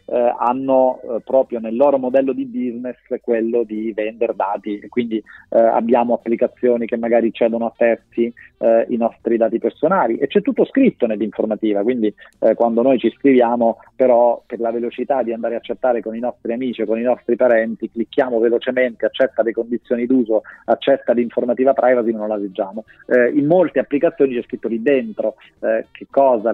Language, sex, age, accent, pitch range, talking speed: Italian, male, 40-59, native, 115-130 Hz, 175 wpm